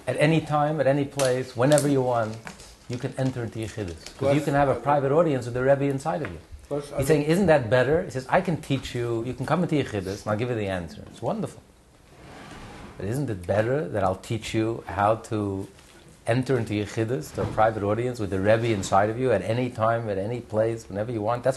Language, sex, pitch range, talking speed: English, male, 110-150 Hz, 230 wpm